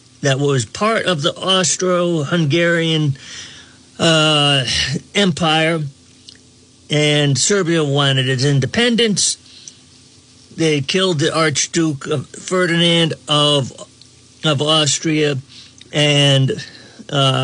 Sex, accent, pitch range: male, American, 130-185 Hz